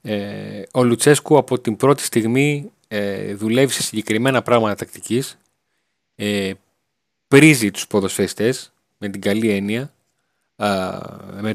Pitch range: 105-140 Hz